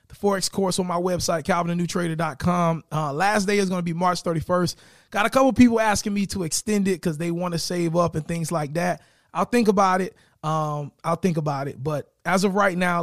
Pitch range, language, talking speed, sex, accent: 150-185 Hz, English, 225 wpm, male, American